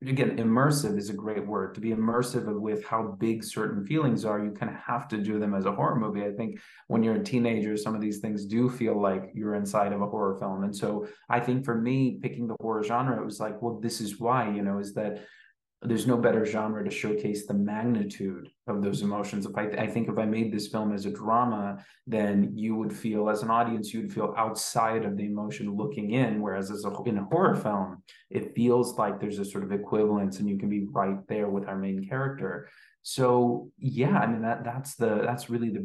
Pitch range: 105-120 Hz